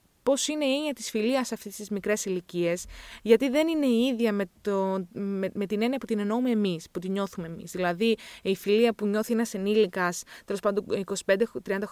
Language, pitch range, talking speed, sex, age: Greek, 185-240 Hz, 200 wpm, female, 20-39